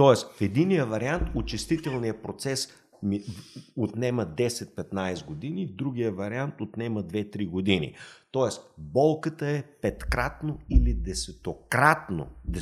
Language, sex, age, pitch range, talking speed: Bulgarian, male, 50-69, 100-140 Hz, 100 wpm